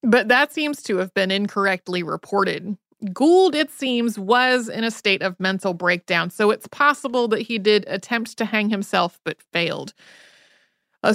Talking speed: 165 wpm